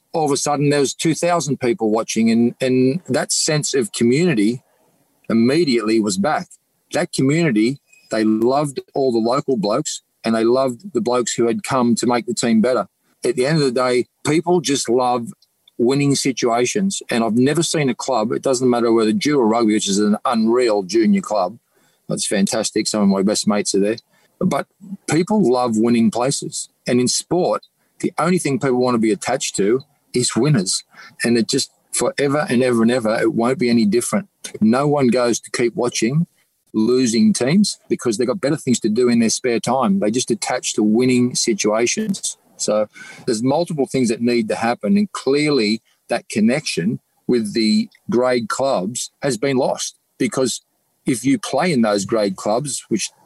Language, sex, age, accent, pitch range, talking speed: English, male, 40-59, Australian, 115-150 Hz, 185 wpm